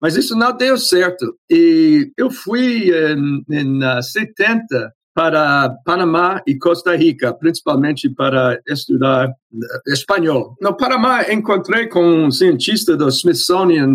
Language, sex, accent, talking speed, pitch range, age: Portuguese, male, Brazilian, 120 wpm, 135-215 Hz, 60-79